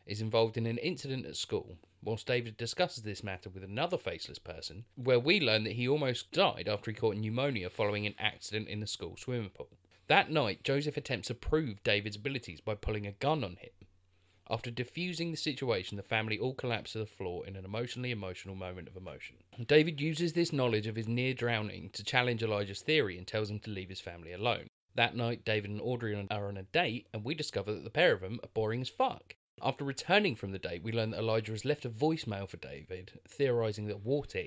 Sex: male